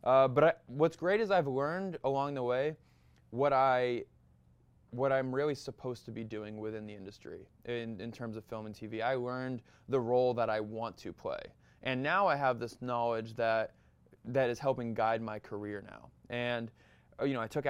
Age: 20-39